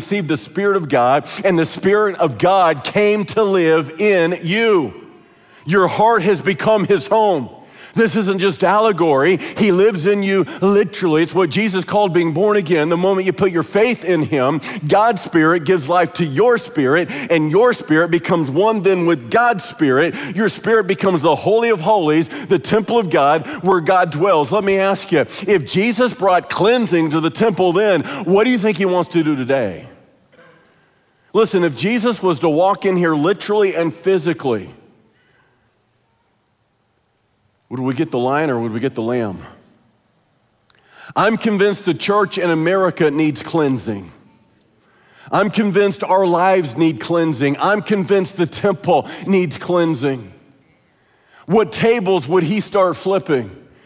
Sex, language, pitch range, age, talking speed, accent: male, English, 165-205 Hz, 50-69, 160 wpm, American